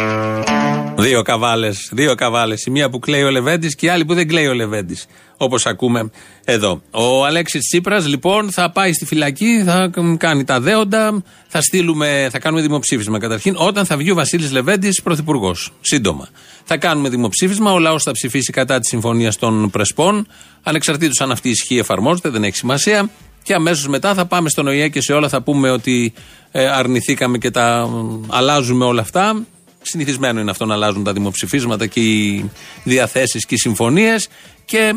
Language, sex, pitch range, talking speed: Greek, male, 120-165 Hz, 170 wpm